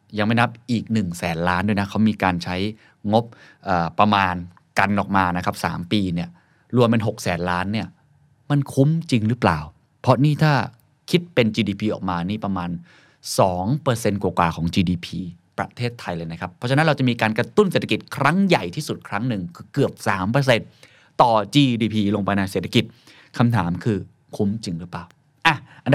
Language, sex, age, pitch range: Thai, male, 20-39, 100-135 Hz